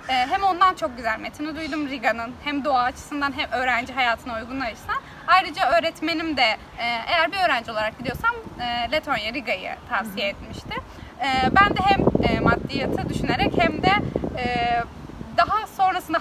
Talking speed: 130 wpm